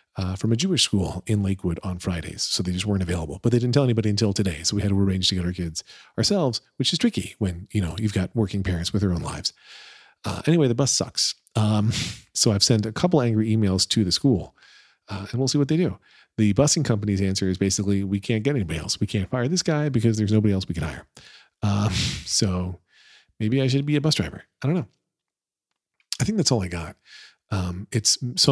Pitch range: 95-120 Hz